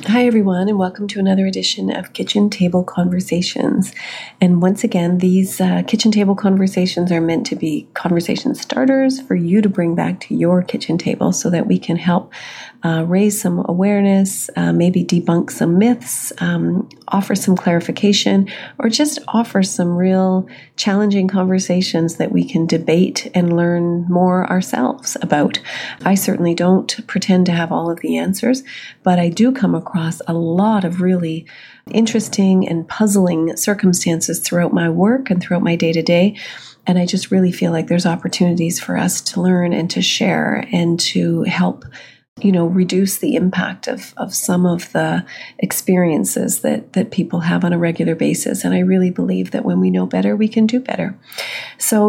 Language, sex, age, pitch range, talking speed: English, female, 40-59, 175-205 Hz, 170 wpm